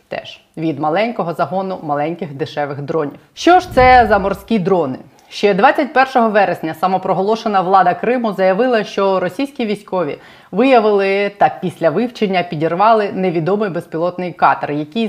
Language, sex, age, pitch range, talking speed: Ukrainian, female, 30-49, 170-215 Hz, 125 wpm